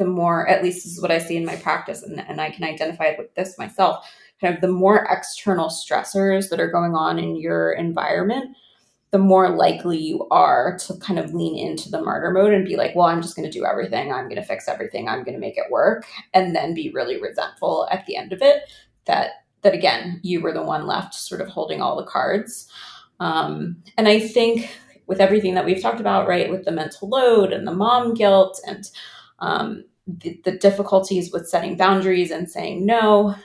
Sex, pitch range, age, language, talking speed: female, 175-205 Hz, 20-39, English, 215 wpm